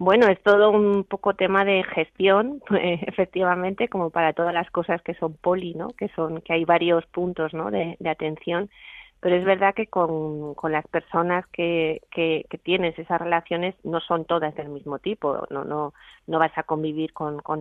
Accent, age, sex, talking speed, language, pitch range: Spanish, 30-49, female, 200 wpm, Spanish, 160-185 Hz